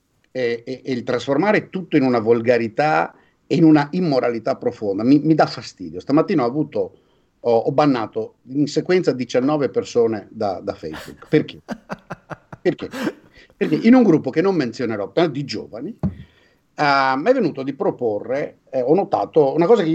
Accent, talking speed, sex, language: native, 160 wpm, male, Italian